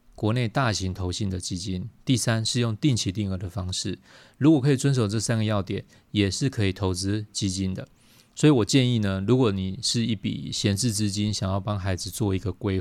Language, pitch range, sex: Chinese, 95-120 Hz, male